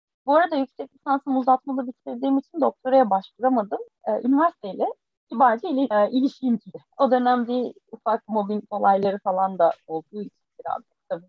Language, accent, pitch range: Turkish, native, 225-285 Hz